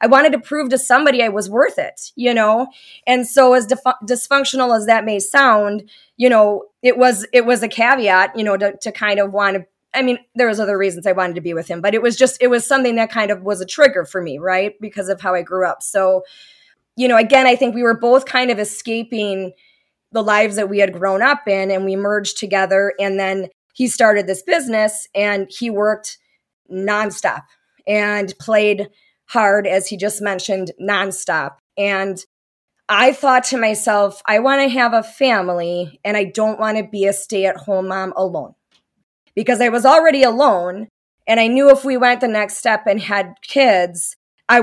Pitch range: 200-255 Hz